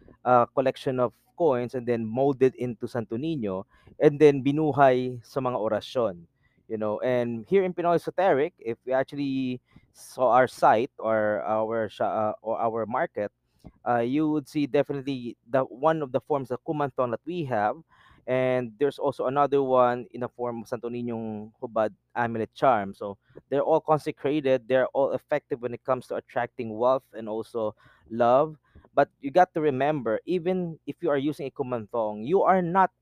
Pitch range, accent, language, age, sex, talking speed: 120-150 Hz, native, Filipino, 20-39, male, 175 wpm